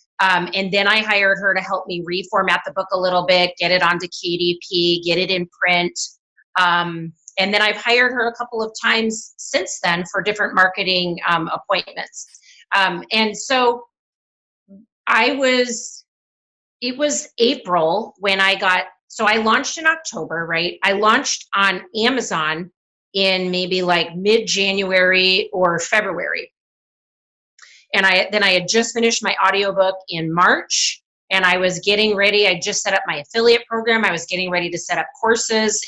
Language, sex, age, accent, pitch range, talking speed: English, female, 30-49, American, 175-215 Hz, 165 wpm